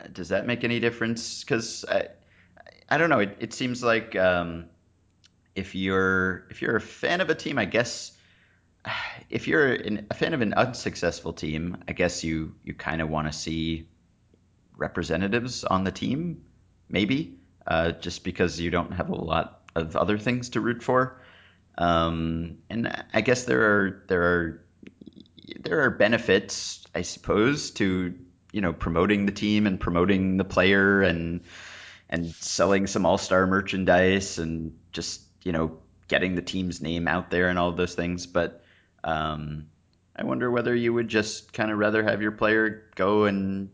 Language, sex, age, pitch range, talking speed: English, male, 30-49, 85-100 Hz, 170 wpm